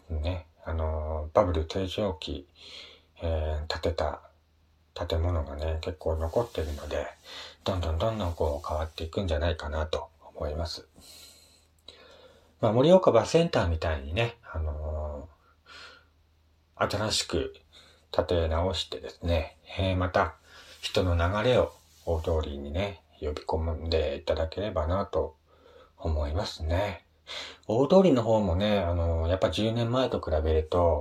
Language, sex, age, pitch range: Japanese, male, 40-59, 80-105 Hz